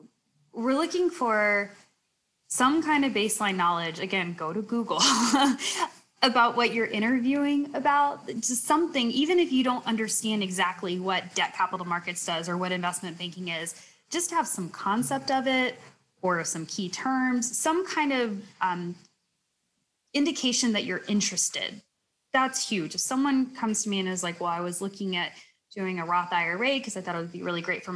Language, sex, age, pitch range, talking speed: English, female, 20-39, 175-245 Hz, 175 wpm